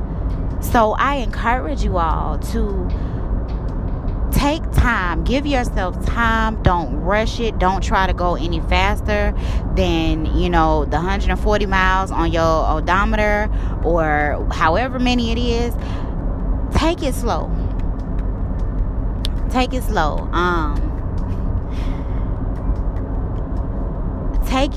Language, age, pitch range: English, 20-39, 90-100 Hz